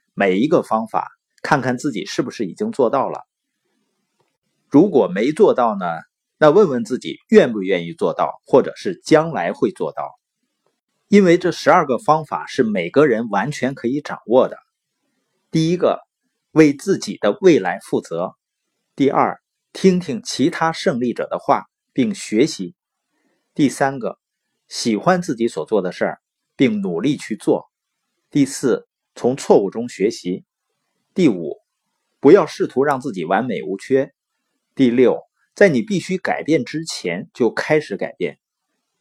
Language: Chinese